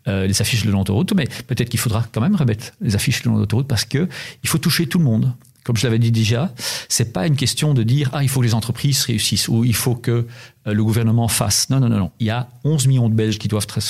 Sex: male